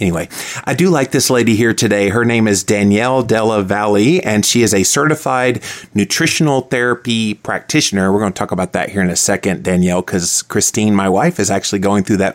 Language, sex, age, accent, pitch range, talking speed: English, male, 30-49, American, 100-130 Hz, 205 wpm